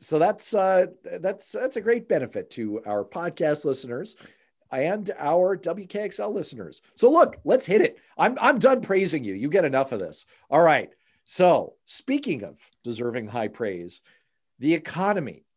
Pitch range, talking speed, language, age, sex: 105-175 Hz, 160 wpm, English, 40-59, male